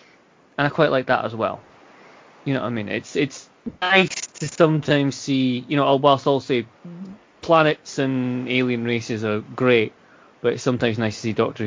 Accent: British